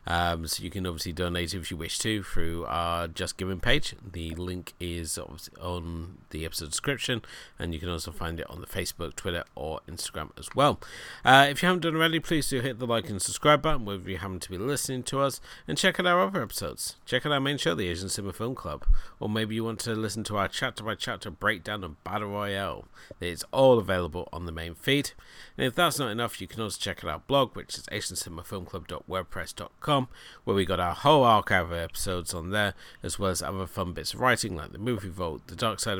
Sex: male